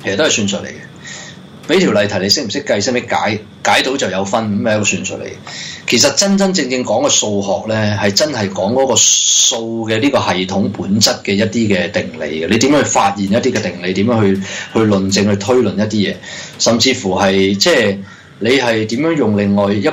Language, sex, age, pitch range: Chinese, male, 20-39, 95-120 Hz